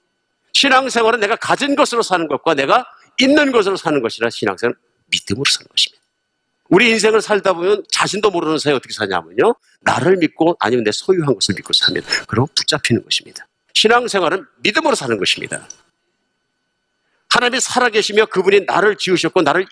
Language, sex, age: Korean, male, 50-69